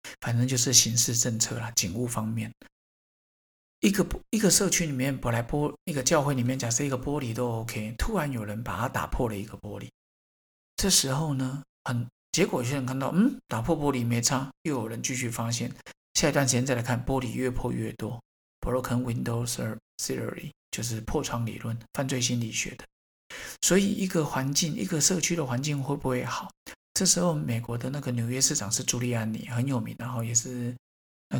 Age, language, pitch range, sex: 50-69, Chinese, 115-145 Hz, male